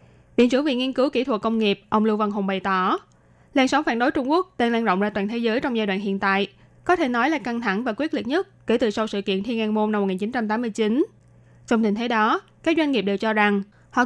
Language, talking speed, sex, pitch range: Vietnamese, 275 wpm, female, 210-265 Hz